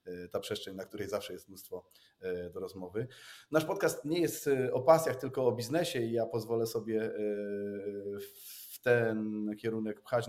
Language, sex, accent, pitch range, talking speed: Polish, male, native, 110-130 Hz, 150 wpm